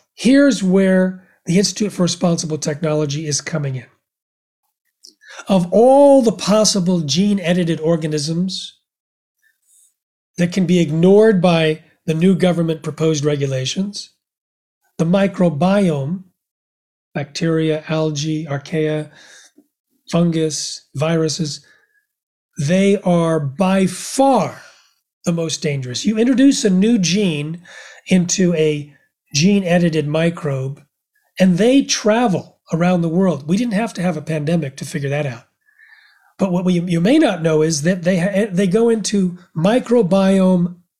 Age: 40-59